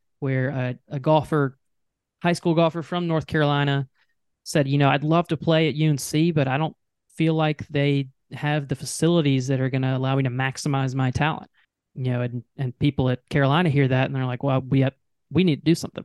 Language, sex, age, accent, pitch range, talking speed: English, male, 20-39, American, 130-155 Hz, 215 wpm